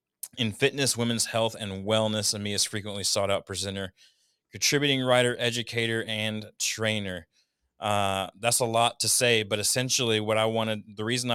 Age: 30-49